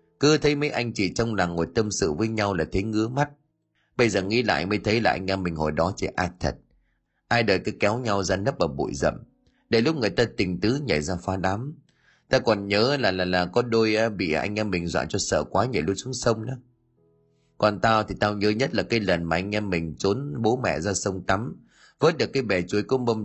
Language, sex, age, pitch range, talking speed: Vietnamese, male, 30-49, 90-120 Hz, 255 wpm